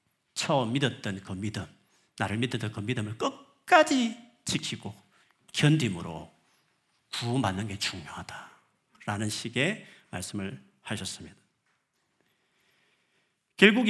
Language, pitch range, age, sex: Korean, 110-180 Hz, 40-59, male